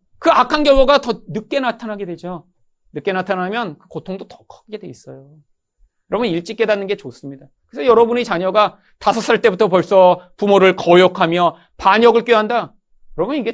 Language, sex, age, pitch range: Korean, male, 40-59, 175-280 Hz